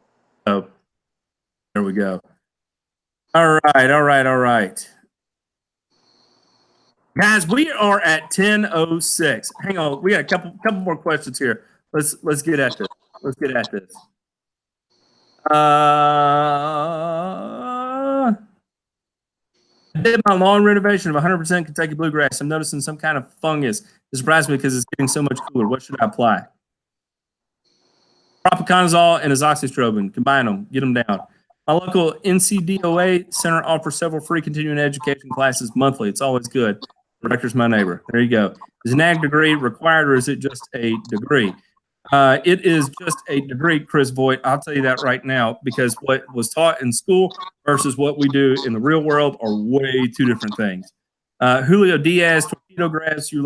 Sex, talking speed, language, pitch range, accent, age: male, 165 wpm, English, 130-170 Hz, American, 40-59